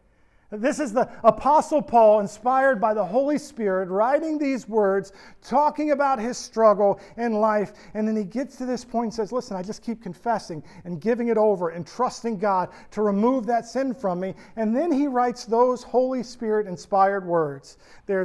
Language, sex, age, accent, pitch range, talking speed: English, male, 40-59, American, 180-235 Hz, 185 wpm